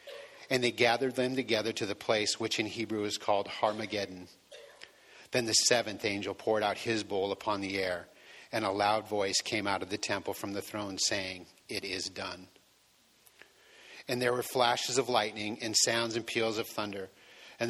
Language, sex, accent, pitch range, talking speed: English, male, American, 105-120 Hz, 185 wpm